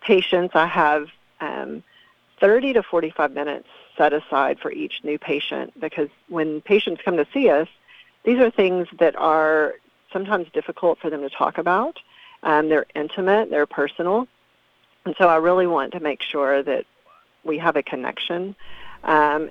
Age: 40-59